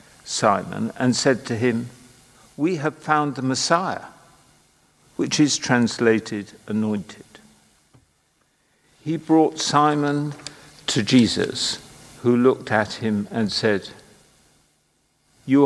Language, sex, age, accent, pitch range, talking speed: English, male, 50-69, British, 110-140 Hz, 100 wpm